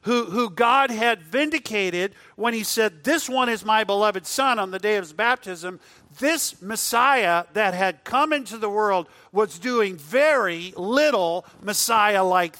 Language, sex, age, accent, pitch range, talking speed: English, male, 50-69, American, 140-200 Hz, 150 wpm